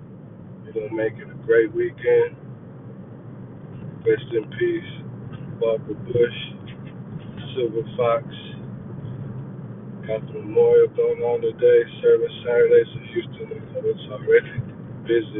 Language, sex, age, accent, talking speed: English, male, 50-69, American, 105 wpm